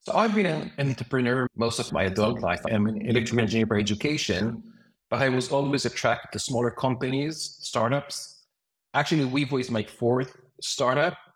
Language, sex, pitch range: English, male, 110-140 Hz